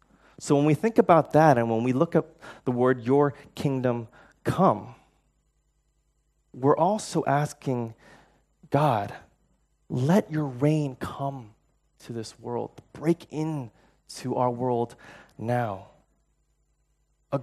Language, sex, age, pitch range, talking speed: English, male, 20-39, 115-145 Hz, 115 wpm